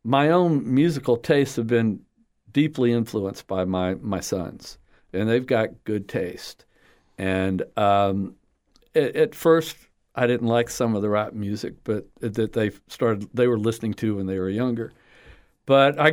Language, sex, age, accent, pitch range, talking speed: English, male, 50-69, American, 95-120 Hz, 165 wpm